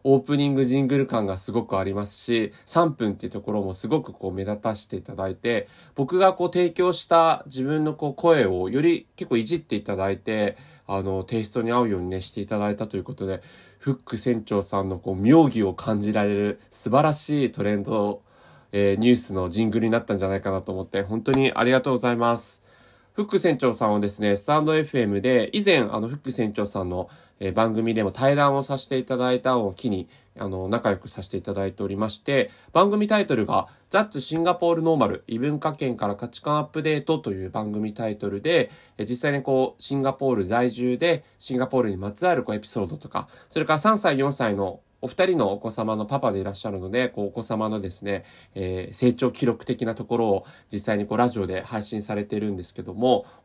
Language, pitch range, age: Japanese, 100-135 Hz, 20-39